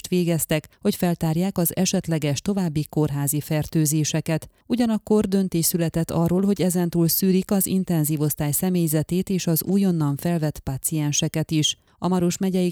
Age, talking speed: 30-49, 125 wpm